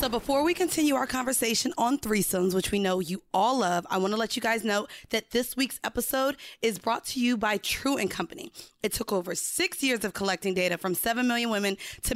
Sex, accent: female, American